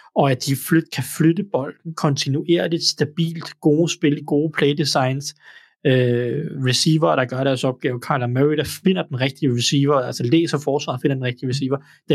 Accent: native